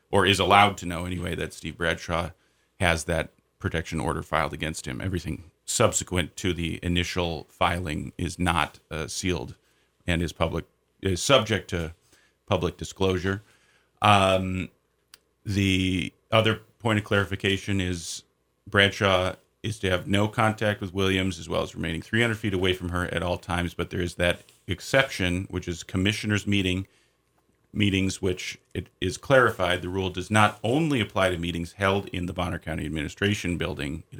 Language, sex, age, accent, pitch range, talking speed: English, male, 40-59, American, 85-100 Hz, 160 wpm